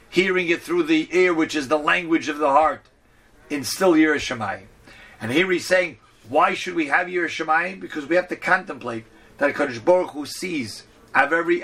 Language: English